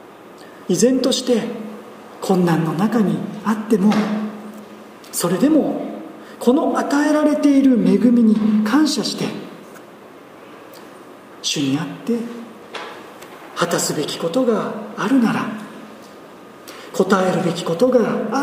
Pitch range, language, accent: 210-245 Hz, Japanese, native